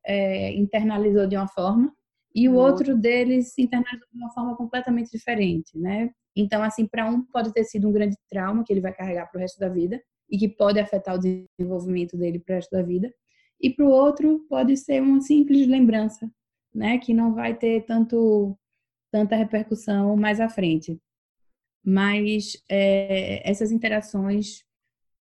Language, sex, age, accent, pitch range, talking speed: Portuguese, female, 20-39, Brazilian, 195-230 Hz, 170 wpm